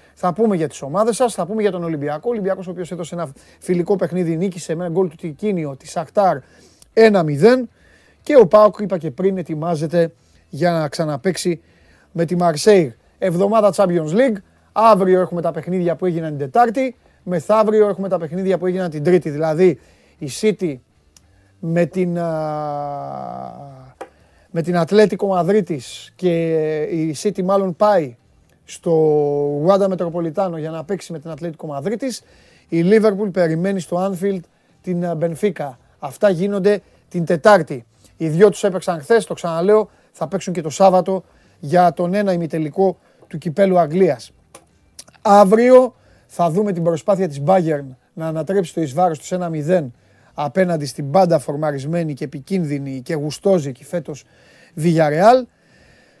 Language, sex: Greek, male